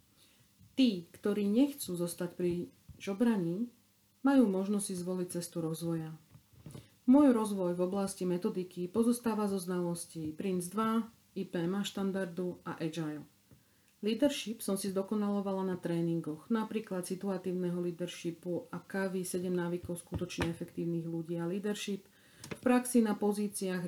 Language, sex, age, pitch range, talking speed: Slovak, female, 40-59, 170-200 Hz, 120 wpm